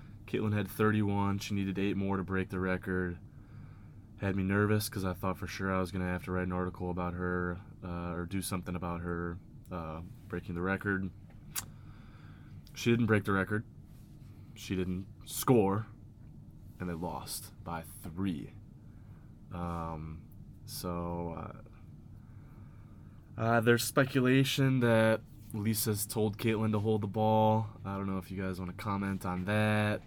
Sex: male